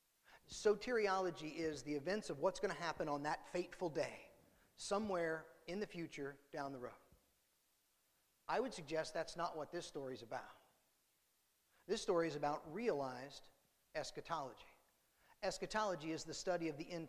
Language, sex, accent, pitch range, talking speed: English, male, American, 155-190 Hz, 150 wpm